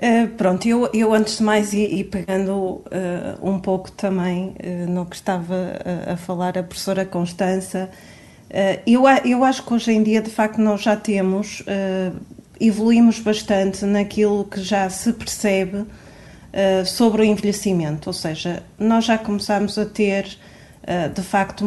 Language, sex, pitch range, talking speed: Portuguese, female, 185-215 Hz, 165 wpm